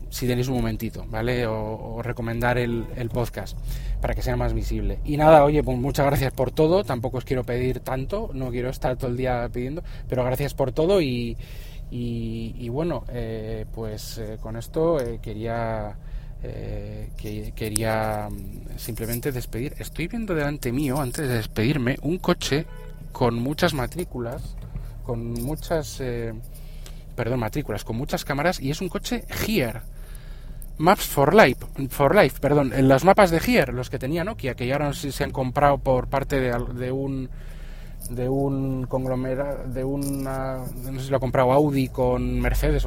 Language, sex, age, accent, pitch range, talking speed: Spanish, male, 20-39, Spanish, 115-140 Hz, 170 wpm